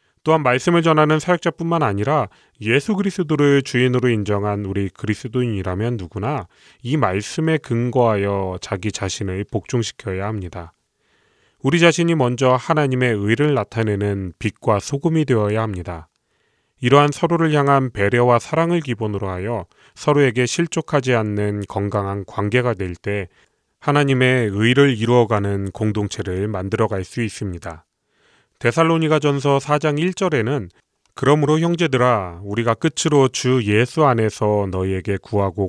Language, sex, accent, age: Korean, male, native, 30-49